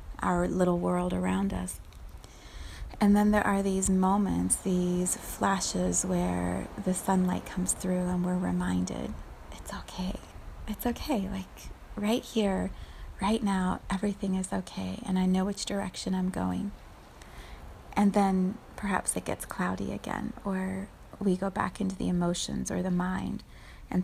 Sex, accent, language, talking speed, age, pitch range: female, American, English, 145 wpm, 30-49, 165-205 Hz